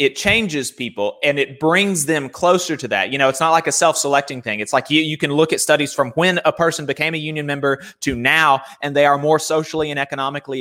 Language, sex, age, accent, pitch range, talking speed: English, male, 30-49, American, 120-150 Hz, 245 wpm